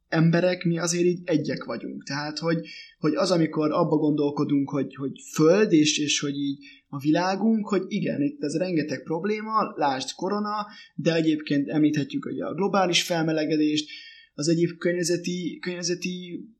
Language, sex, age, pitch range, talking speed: Hungarian, male, 20-39, 145-180 Hz, 150 wpm